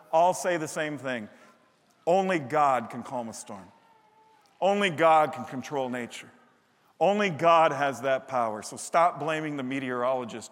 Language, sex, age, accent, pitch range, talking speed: English, male, 50-69, American, 135-215 Hz, 150 wpm